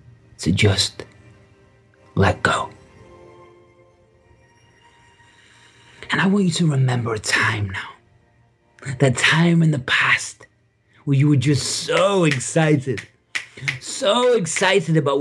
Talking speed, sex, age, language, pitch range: 105 wpm, male, 30-49, English, 115-140 Hz